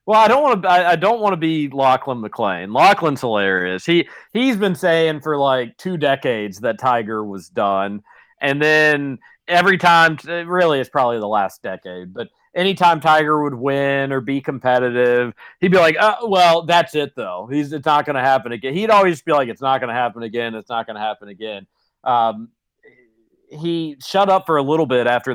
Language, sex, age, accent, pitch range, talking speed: English, male, 40-59, American, 115-160 Hz, 200 wpm